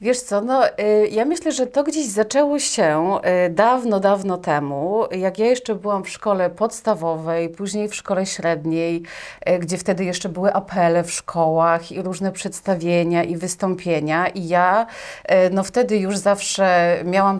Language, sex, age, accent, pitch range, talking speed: Polish, female, 30-49, native, 165-215 Hz, 145 wpm